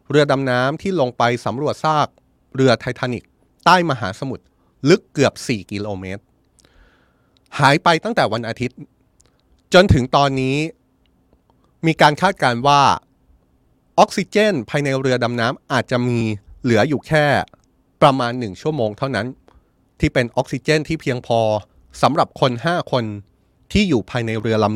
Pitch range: 115-150 Hz